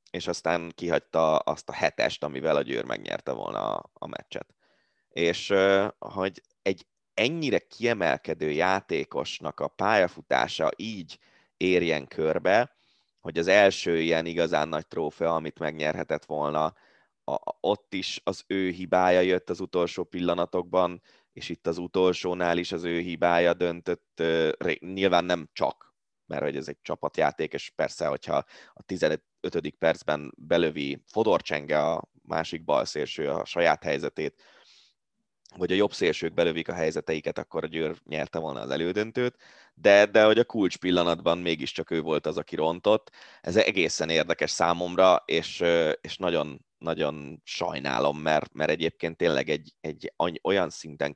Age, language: 20-39, Hungarian